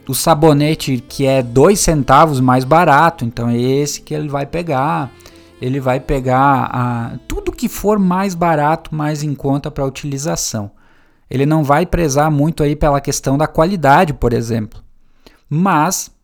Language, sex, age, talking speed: Portuguese, male, 20-39, 155 wpm